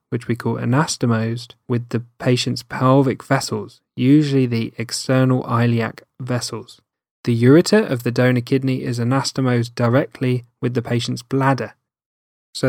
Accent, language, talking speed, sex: British, English, 130 wpm, male